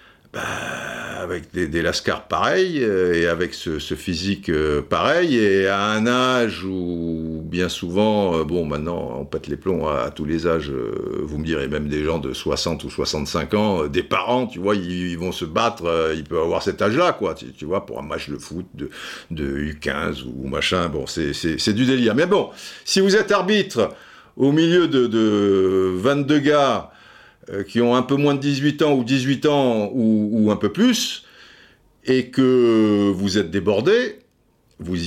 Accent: French